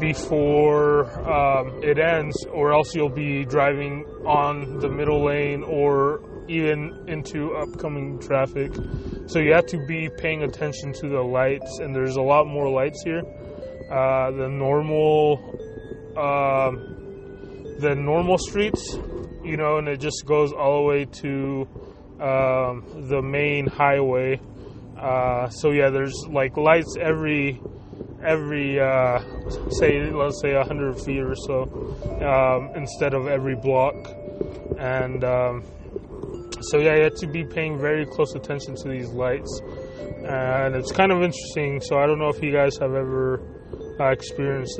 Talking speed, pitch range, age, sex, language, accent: 145 wpm, 130-150 Hz, 20-39, male, English, American